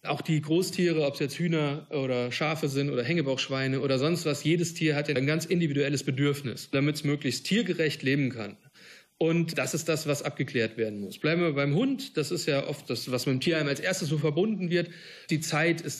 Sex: male